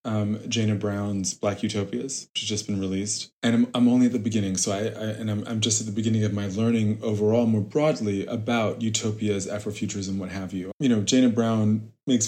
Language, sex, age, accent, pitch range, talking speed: English, male, 20-39, American, 105-120 Hz, 215 wpm